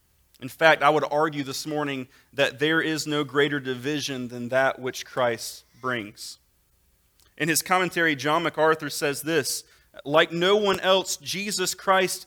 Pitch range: 135-180 Hz